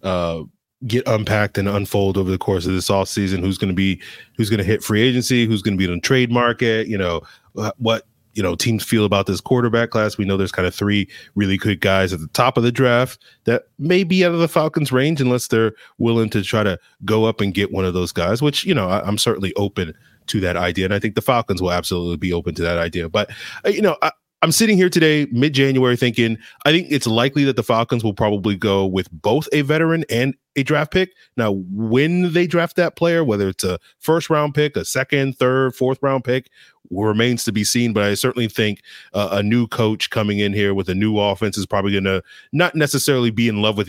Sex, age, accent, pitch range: male, 30-49, American, 100-130 Hz